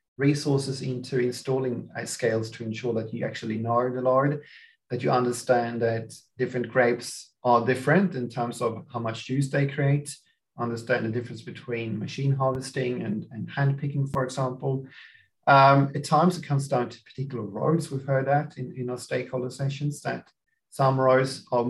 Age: 40-59